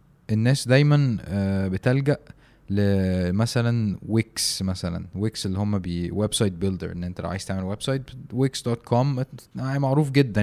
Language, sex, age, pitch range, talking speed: Arabic, male, 20-39, 95-120 Hz, 125 wpm